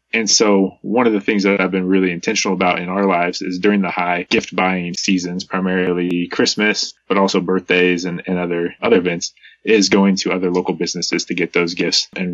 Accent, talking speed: American, 210 wpm